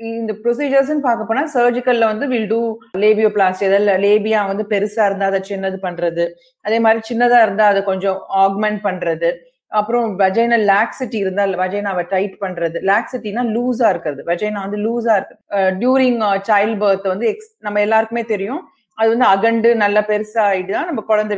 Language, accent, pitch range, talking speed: Tamil, native, 195-245 Hz, 115 wpm